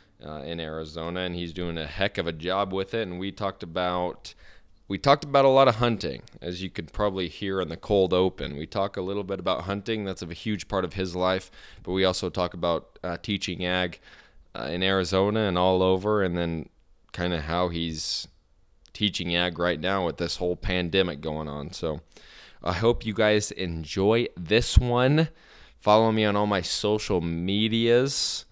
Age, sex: 20-39, male